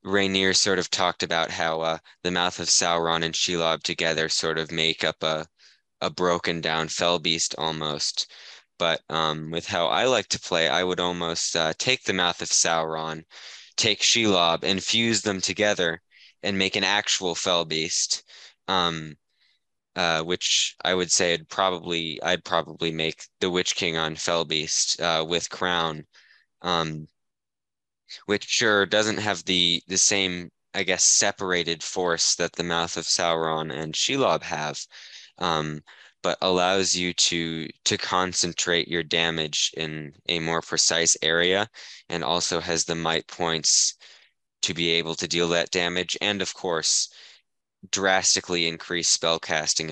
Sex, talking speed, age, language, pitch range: male, 155 wpm, 20-39, English, 80-90 Hz